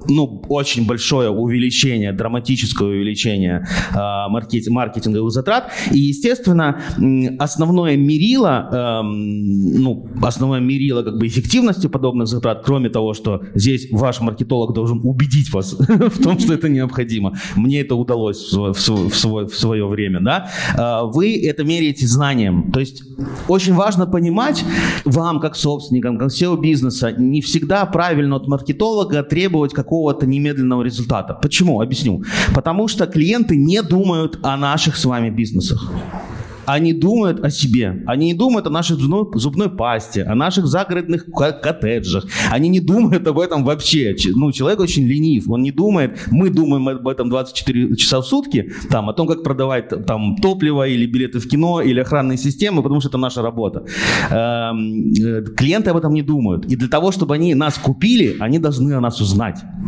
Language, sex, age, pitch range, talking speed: Ukrainian, male, 30-49, 115-155 Hz, 145 wpm